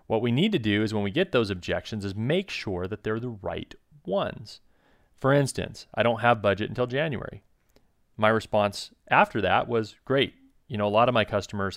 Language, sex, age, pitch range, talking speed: English, male, 30-49, 100-130 Hz, 205 wpm